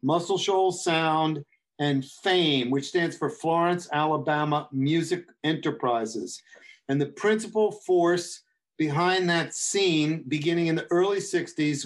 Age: 50-69